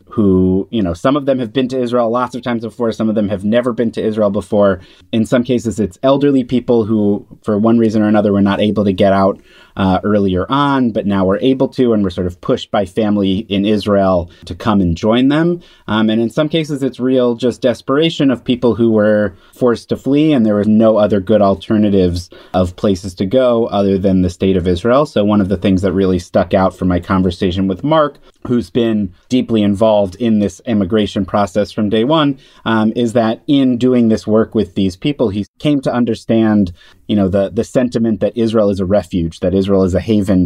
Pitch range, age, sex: 95-120 Hz, 30-49, male